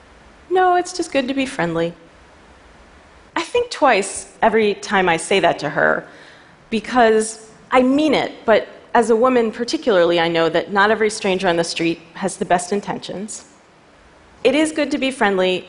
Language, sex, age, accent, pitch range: Chinese, female, 30-49, American, 170-240 Hz